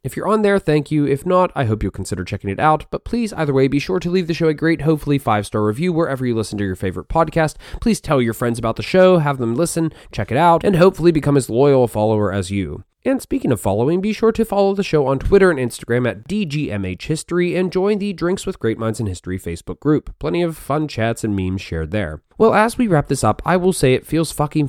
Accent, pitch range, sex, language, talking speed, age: American, 110-180 Hz, male, English, 260 wpm, 20-39